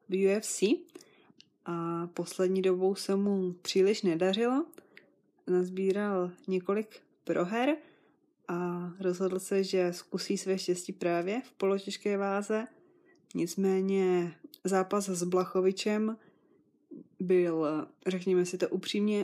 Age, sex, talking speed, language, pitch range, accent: 20-39, female, 100 wpm, Czech, 180-205 Hz, native